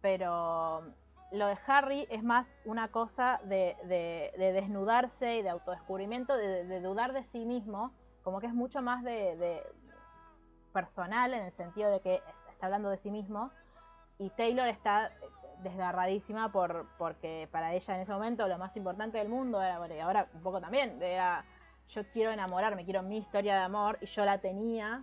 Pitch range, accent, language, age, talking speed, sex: 175-220 Hz, Argentinian, Spanish, 20-39, 185 wpm, female